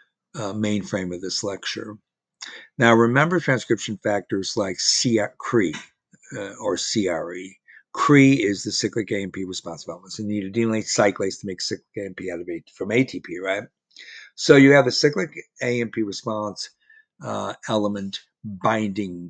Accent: American